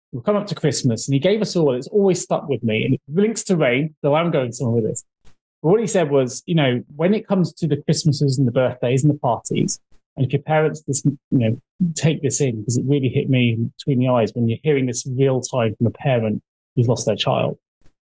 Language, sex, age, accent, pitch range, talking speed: English, male, 30-49, British, 125-155 Hz, 265 wpm